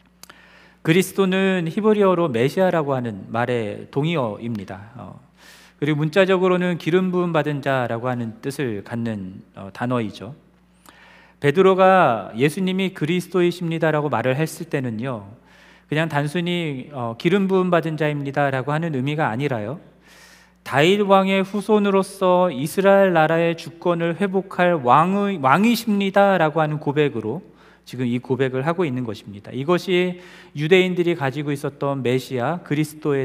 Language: Korean